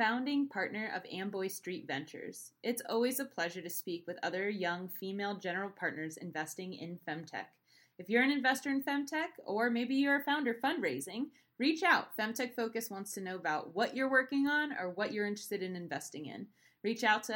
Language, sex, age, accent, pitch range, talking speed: English, female, 20-39, American, 185-240 Hz, 190 wpm